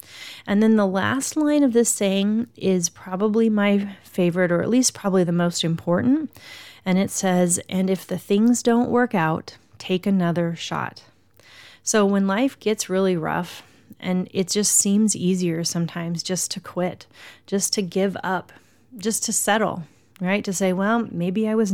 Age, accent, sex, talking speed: 30-49, American, female, 170 wpm